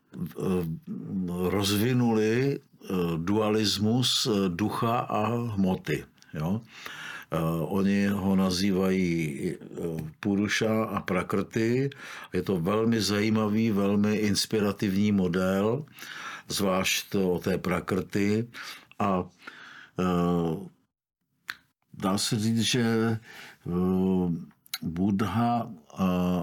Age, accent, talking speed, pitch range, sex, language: 50-69, native, 65 wpm, 90-105 Hz, male, Czech